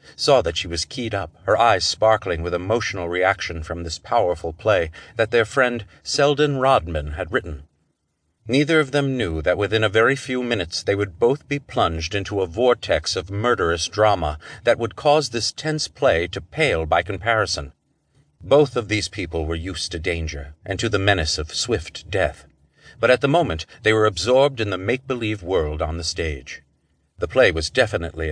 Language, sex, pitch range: English, male, 85-120 Hz